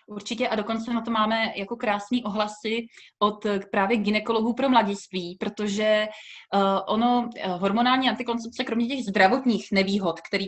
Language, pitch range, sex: Slovak, 190-235 Hz, female